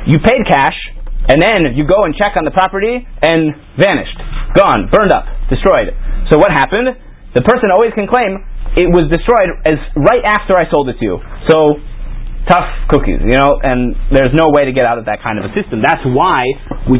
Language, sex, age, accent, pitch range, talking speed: English, male, 30-49, American, 125-170 Hz, 205 wpm